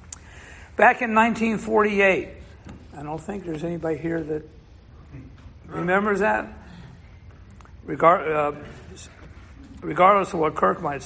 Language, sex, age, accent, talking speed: English, male, 60-79, American, 100 wpm